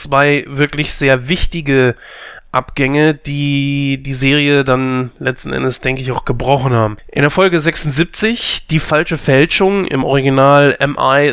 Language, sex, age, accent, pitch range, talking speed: German, male, 30-49, German, 130-155 Hz, 140 wpm